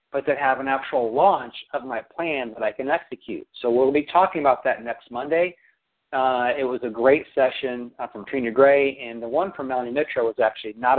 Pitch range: 125-155 Hz